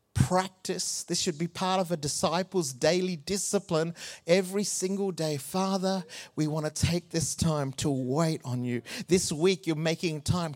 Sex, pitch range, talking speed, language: male, 155-195 Hz, 165 wpm, English